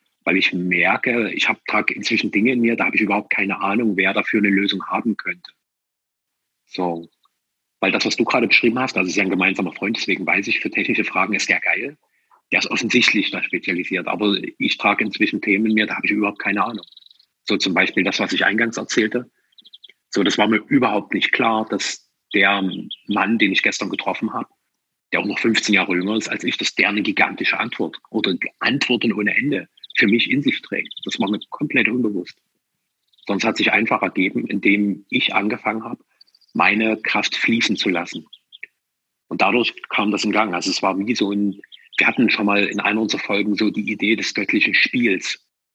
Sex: male